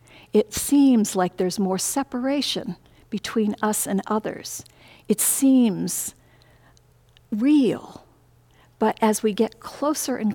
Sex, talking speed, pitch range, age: female, 110 wpm, 180-230 Hz, 50-69